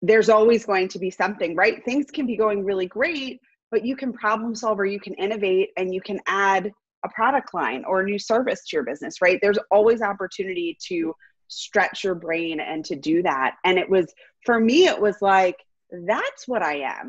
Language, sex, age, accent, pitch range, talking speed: English, female, 30-49, American, 170-225 Hz, 210 wpm